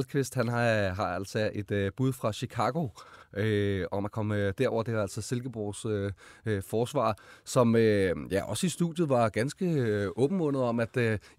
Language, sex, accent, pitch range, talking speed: Danish, male, native, 105-130 Hz, 185 wpm